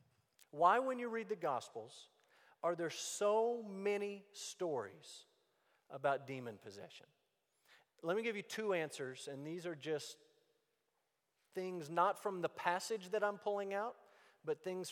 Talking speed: 140 wpm